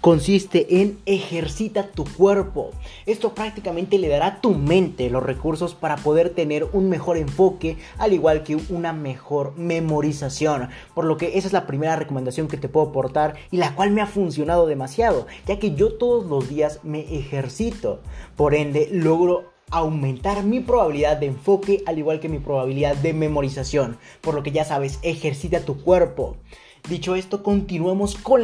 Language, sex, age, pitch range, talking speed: Spanish, male, 30-49, 150-185 Hz, 170 wpm